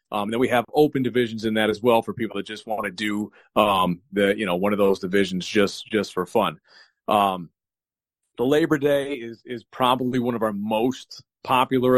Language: English